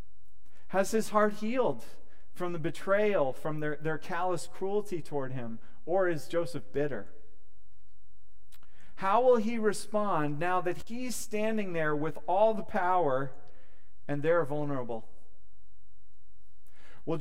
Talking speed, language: 120 wpm, English